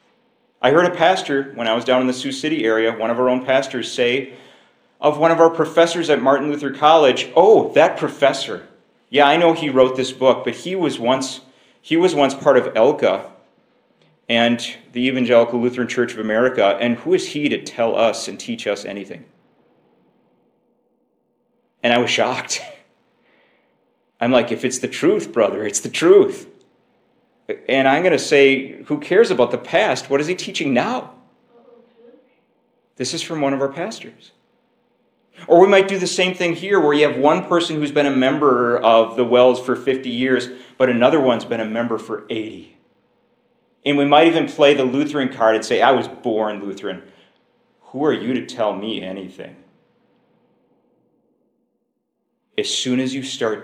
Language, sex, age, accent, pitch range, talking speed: English, male, 40-59, American, 125-190 Hz, 180 wpm